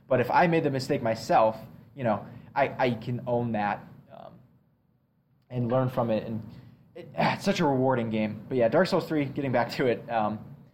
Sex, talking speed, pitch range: male, 200 wpm, 115-145 Hz